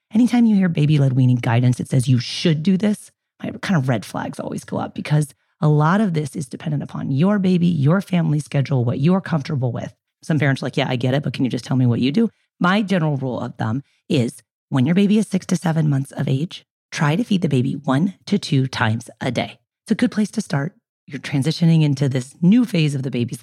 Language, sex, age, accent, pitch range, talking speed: English, female, 30-49, American, 135-185 Hz, 245 wpm